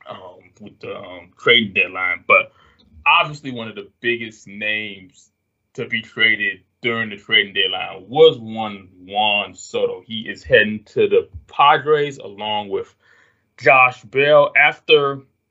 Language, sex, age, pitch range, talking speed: English, male, 20-39, 105-150 Hz, 135 wpm